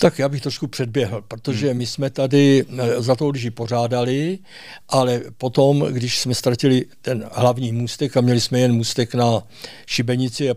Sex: male